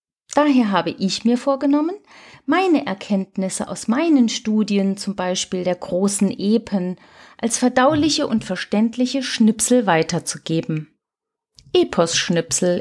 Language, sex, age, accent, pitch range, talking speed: German, female, 40-59, German, 195-260 Hz, 105 wpm